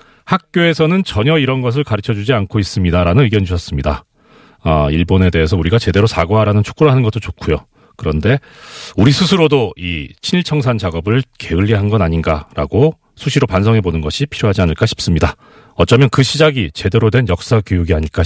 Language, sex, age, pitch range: Korean, male, 40-59, 90-135 Hz